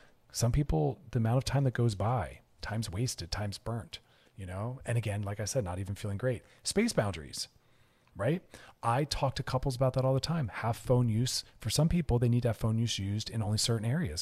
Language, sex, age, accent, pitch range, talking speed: English, male, 40-59, American, 105-130 Hz, 225 wpm